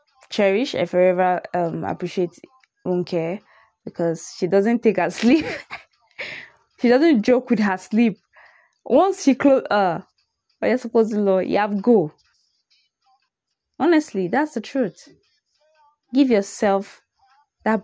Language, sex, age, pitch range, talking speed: English, female, 20-39, 185-260 Hz, 135 wpm